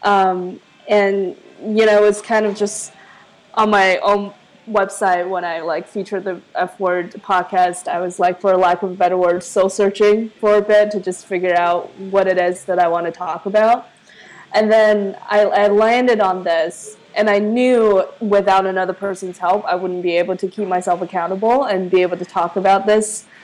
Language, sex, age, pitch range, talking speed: English, female, 20-39, 185-215 Hz, 195 wpm